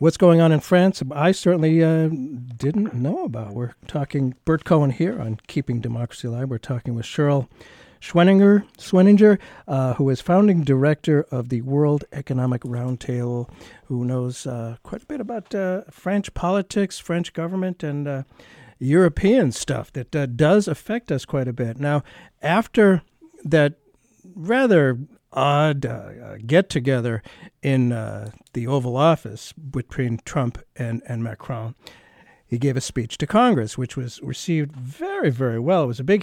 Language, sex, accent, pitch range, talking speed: English, male, American, 125-175 Hz, 150 wpm